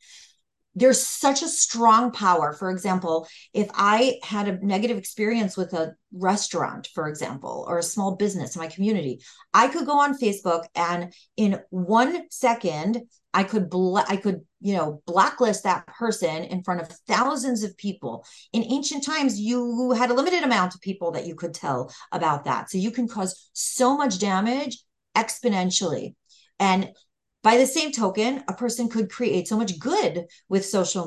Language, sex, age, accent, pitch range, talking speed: English, female, 40-59, American, 180-245 Hz, 170 wpm